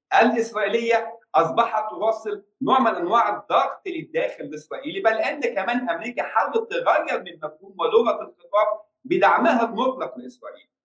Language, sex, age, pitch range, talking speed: Arabic, male, 50-69, 200-285 Hz, 120 wpm